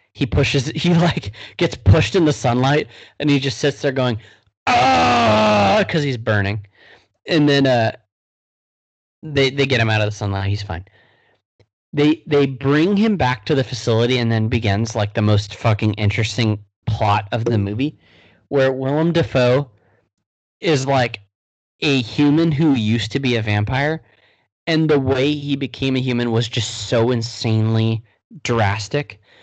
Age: 30-49